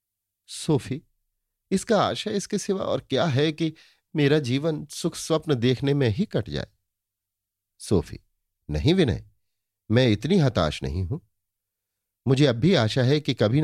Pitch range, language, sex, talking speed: 100-130 Hz, Hindi, male, 145 wpm